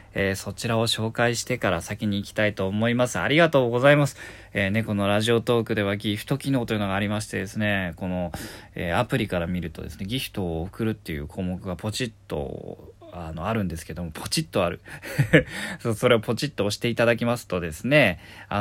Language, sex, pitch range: Japanese, male, 95-125 Hz